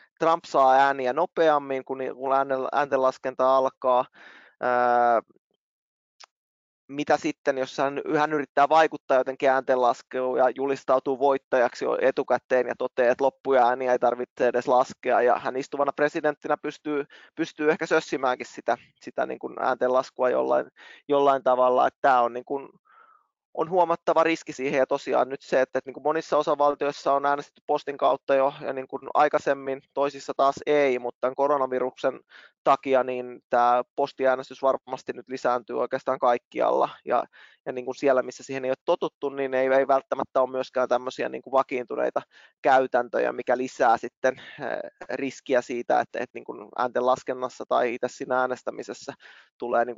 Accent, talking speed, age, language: native, 135 wpm, 20-39, Finnish